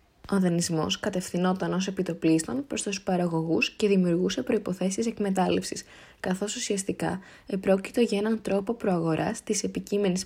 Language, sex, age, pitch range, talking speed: Greek, female, 20-39, 175-215 Hz, 125 wpm